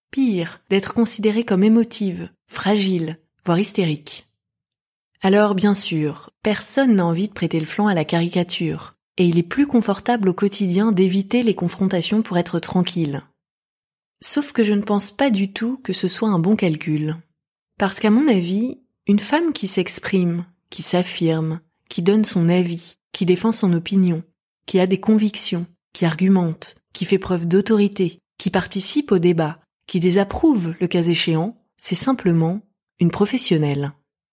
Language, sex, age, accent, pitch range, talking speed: French, female, 20-39, French, 175-215 Hz, 155 wpm